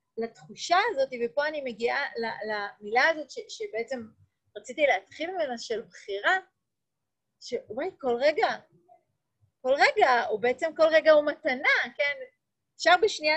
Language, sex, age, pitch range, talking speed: Hebrew, female, 30-49, 230-320 Hz, 125 wpm